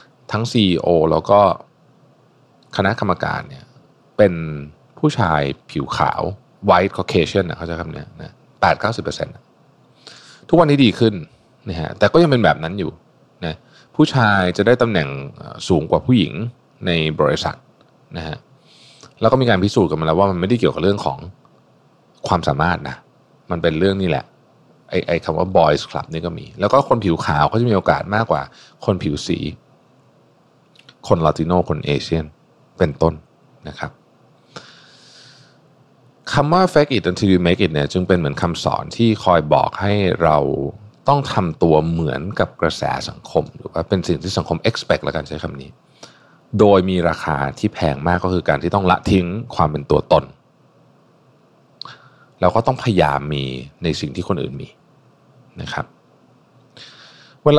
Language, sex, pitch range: Thai, male, 80-115 Hz